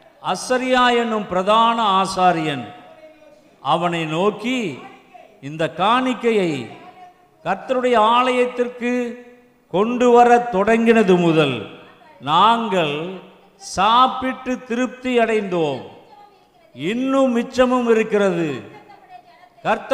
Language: Tamil